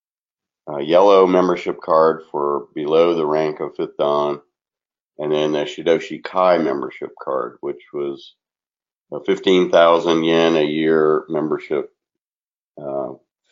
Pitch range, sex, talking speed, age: 75-90 Hz, male, 120 wpm, 50-69